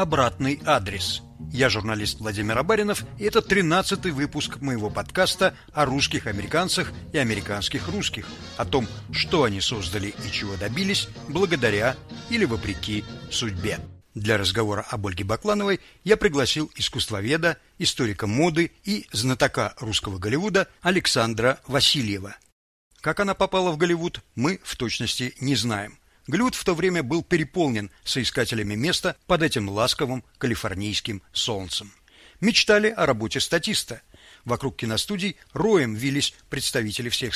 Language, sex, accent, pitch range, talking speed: Russian, male, native, 110-170 Hz, 125 wpm